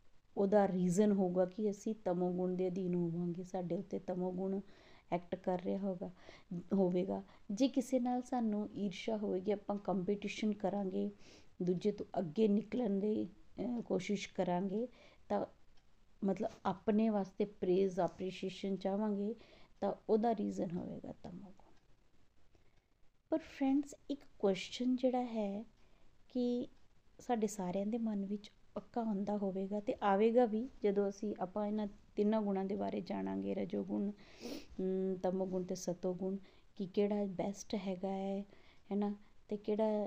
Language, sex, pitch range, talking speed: Punjabi, female, 190-230 Hz, 125 wpm